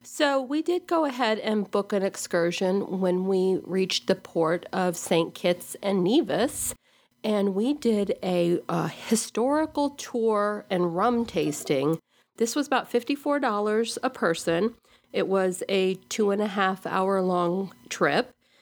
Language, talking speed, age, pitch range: English, 145 wpm, 50-69, 180-230 Hz